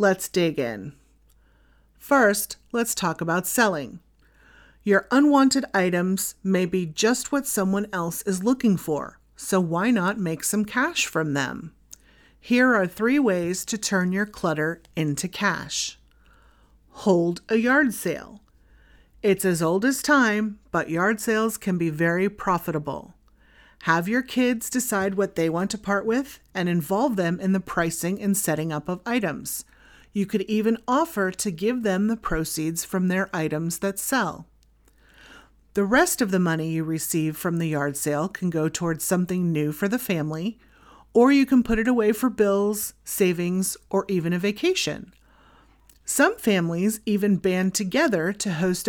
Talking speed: 155 wpm